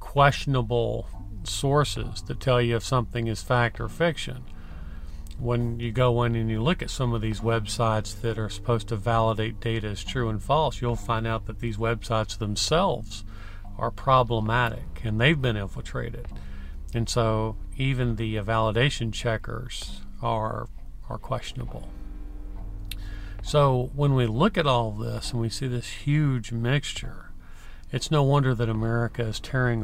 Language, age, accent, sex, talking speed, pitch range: English, 40-59, American, male, 155 wpm, 100-130 Hz